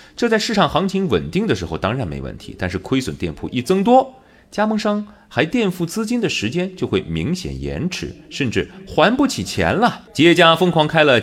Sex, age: male, 30-49